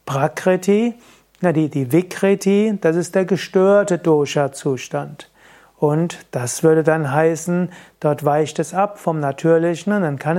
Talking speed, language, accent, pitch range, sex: 135 wpm, German, German, 150-185 Hz, male